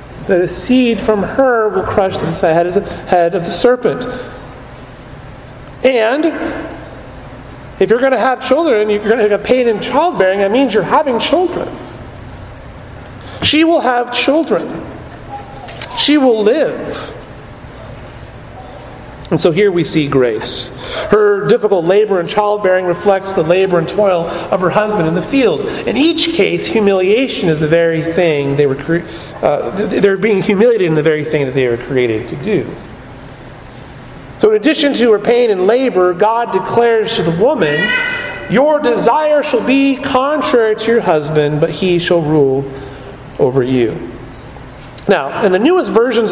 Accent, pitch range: American, 155-245 Hz